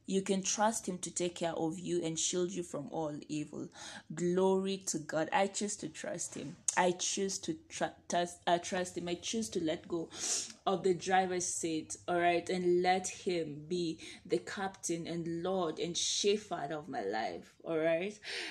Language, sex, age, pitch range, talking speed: English, female, 20-39, 170-205 Hz, 190 wpm